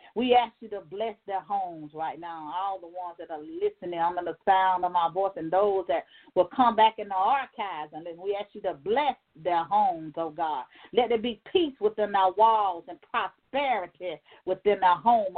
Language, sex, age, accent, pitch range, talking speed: English, female, 40-59, American, 190-260 Hz, 205 wpm